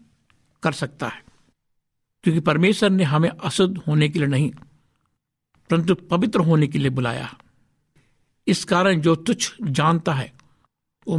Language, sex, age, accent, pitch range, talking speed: Hindi, male, 60-79, native, 140-180 Hz, 130 wpm